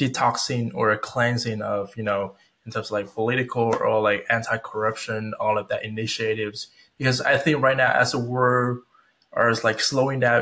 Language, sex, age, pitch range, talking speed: Vietnamese, male, 20-39, 110-125 Hz, 180 wpm